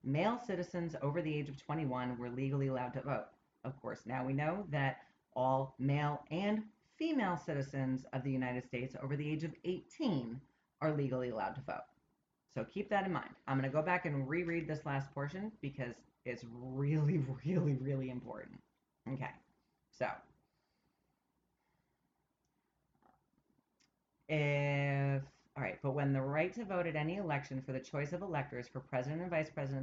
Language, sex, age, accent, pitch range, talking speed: English, female, 30-49, American, 130-175 Hz, 165 wpm